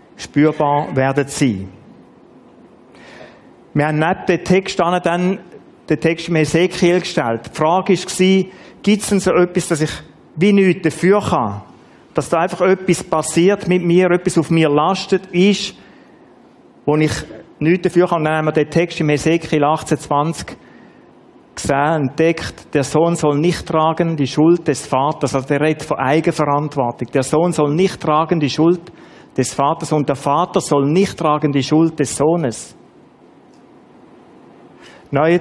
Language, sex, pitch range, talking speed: German, male, 145-175 Hz, 150 wpm